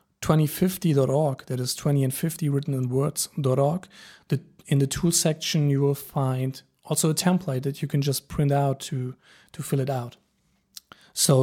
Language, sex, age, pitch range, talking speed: English, male, 40-59, 140-170 Hz, 170 wpm